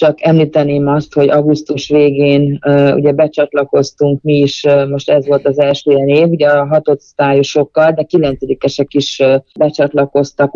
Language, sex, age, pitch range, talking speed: Hungarian, female, 30-49, 145-165 Hz, 155 wpm